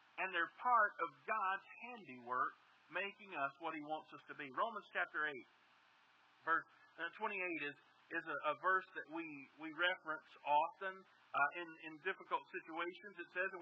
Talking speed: 165 wpm